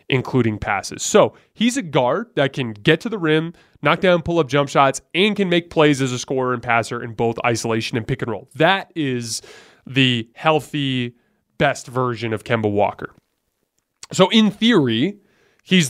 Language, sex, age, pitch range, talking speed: English, male, 20-39, 120-180 Hz, 175 wpm